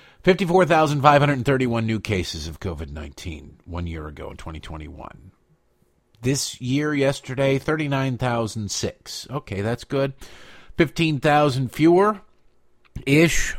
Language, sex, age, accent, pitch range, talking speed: English, male, 50-69, American, 95-135 Hz, 85 wpm